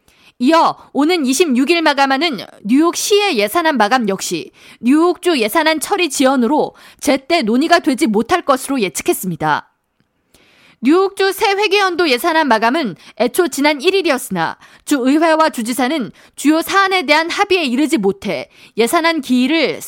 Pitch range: 245-345 Hz